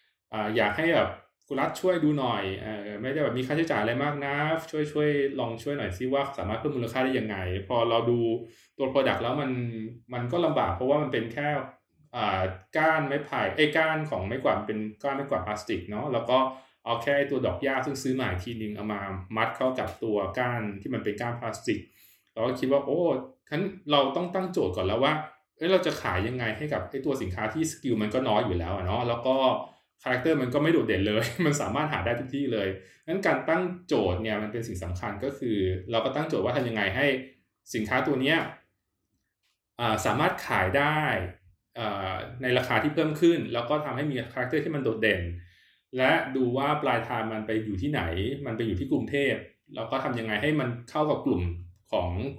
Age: 20-39